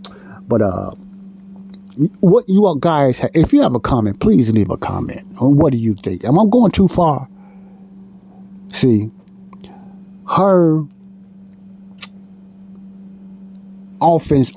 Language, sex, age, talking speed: English, male, 50-69, 120 wpm